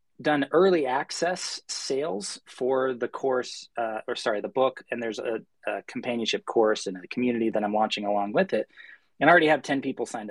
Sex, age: male, 30-49